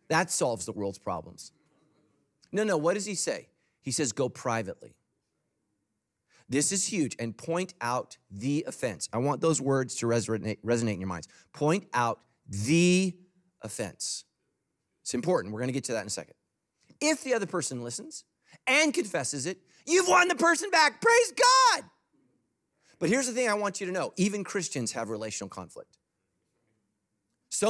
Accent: American